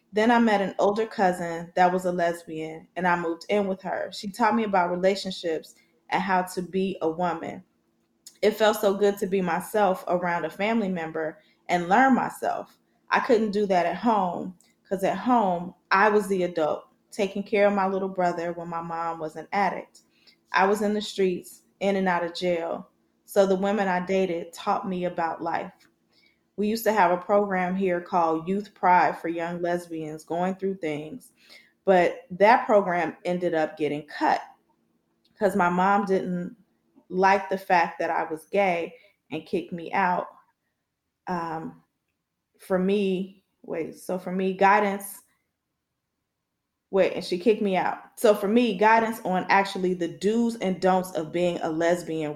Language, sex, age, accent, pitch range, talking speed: English, female, 20-39, American, 175-200 Hz, 175 wpm